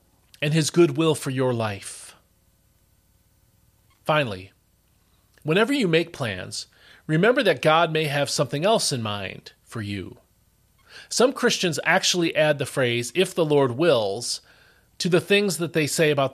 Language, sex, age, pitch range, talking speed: English, male, 40-59, 115-170 Hz, 145 wpm